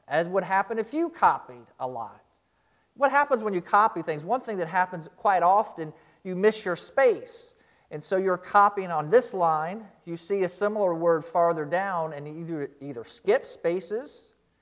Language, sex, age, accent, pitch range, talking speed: English, male, 40-59, American, 160-220 Hz, 180 wpm